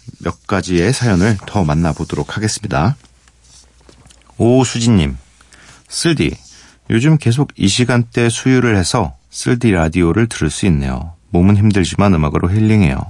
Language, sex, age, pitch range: Korean, male, 40-59, 75-115 Hz